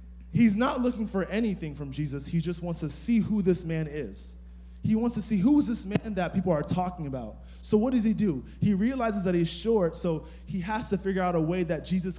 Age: 20-39